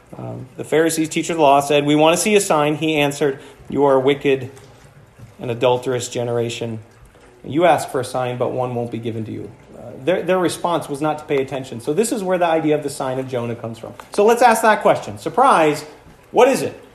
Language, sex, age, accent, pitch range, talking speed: English, male, 40-59, American, 140-215 Hz, 235 wpm